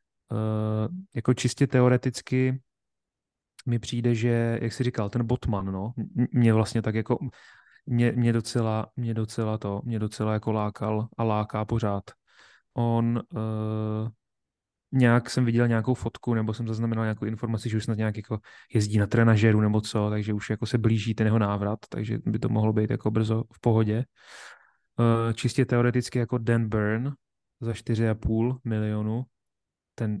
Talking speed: 155 wpm